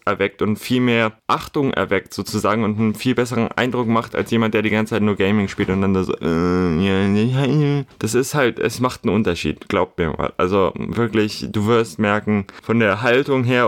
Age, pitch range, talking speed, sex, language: 20-39, 100-120 Hz, 195 wpm, male, German